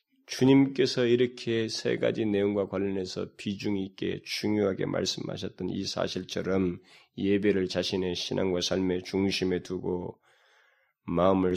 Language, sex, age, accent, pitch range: Korean, male, 20-39, native, 95-135 Hz